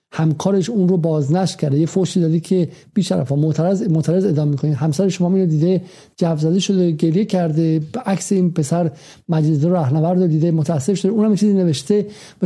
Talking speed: 190 wpm